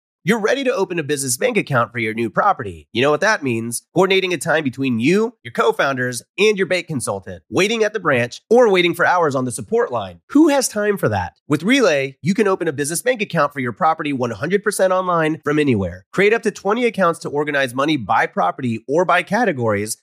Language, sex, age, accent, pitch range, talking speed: English, male, 30-49, American, 125-190 Hz, 220 wpm